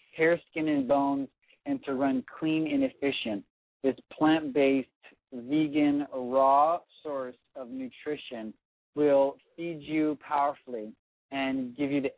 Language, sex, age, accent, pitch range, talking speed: English, male, 40-59, American, 130-155 Hz, 125 wpm